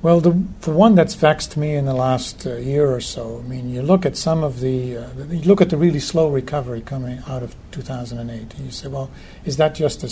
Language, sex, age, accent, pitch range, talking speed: English, male, 60-79, American, 125-145 Hz, 250 wpm